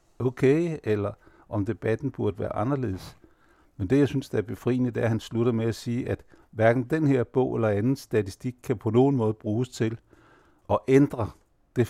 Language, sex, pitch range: Danish, male, 110-135 Hz